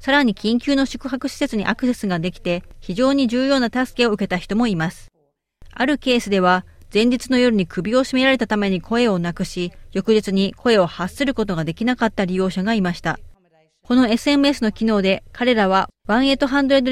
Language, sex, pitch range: Japanese, female, 190-250 Hz